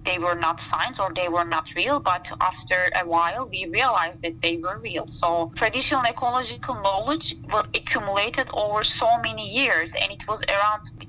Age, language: 20-39, English